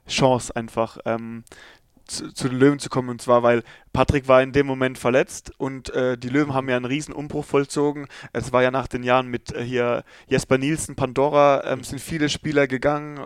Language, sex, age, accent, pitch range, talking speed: German, male, 20-39, German, 130-145 Hz, 205 wpm